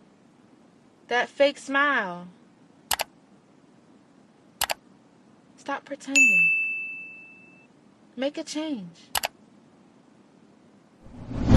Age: 20-39